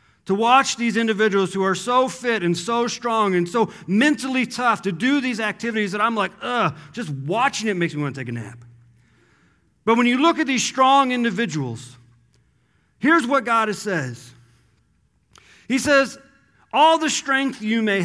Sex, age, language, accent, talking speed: male, 40-59, English, American, 175 wpm